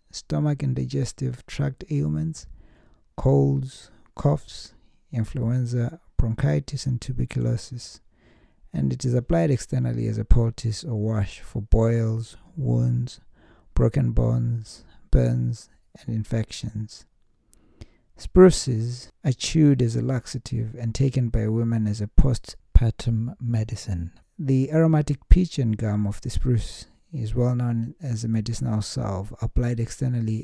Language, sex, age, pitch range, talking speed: English, male, 60-79, 105-130 Hz, 120 wpm